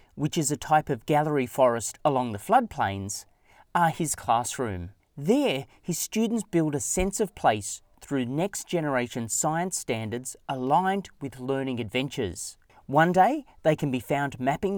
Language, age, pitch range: English, 30-49, 120-180 Hz